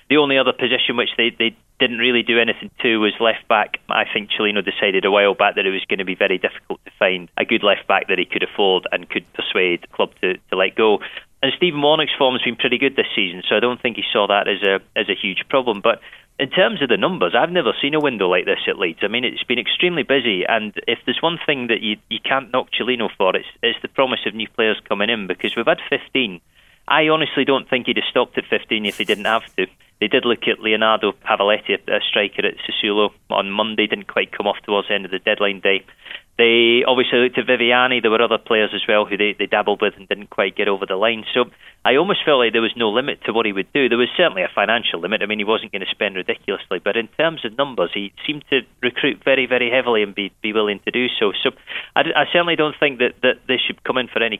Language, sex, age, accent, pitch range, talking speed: English, male, 30-49, British, 105-130 Hz, 260 wpm